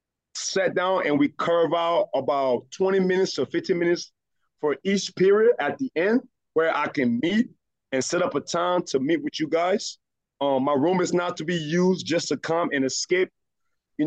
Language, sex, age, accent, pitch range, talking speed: English, male, 30-49, American, 150-180 Hz, 195 wpm